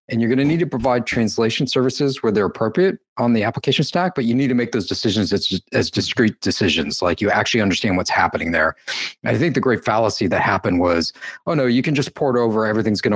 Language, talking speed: English, 235 wpm